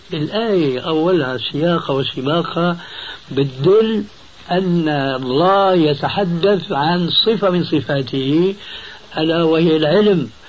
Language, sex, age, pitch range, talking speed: Arabic, male, 60-79, 140-180 Hz, 85 wpm